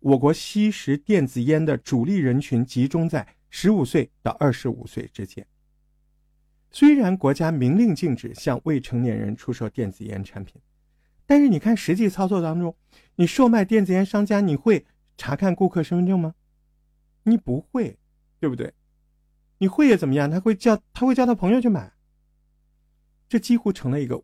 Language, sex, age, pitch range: Chinese, male, 50-69, 120-170 Hz